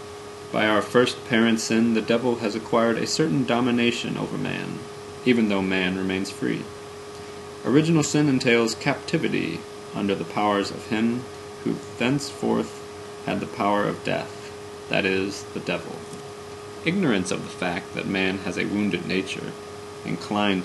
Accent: American